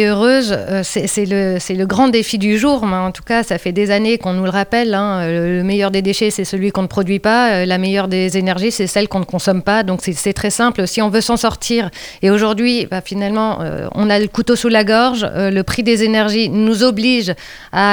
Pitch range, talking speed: 185-220 Hz, 220 wpm